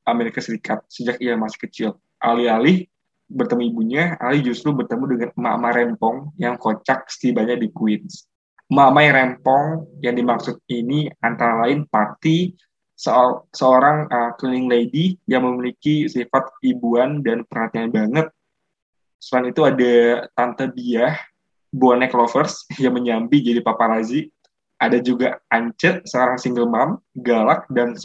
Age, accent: 20-39, native